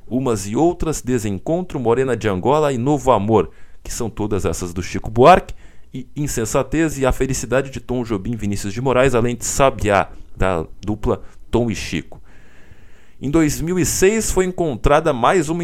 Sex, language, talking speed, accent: male, Portuguese, 165 wpm, Brazilian